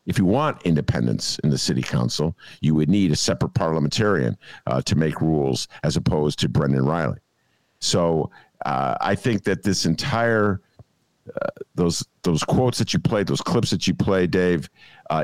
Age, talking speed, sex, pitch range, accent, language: 50-69, 175 wpm, male, 95-145 Hz, American, English